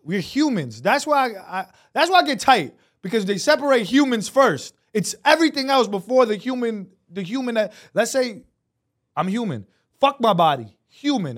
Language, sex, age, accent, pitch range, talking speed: English, male, 20-39, American, 150-230 Hz, 175 wpm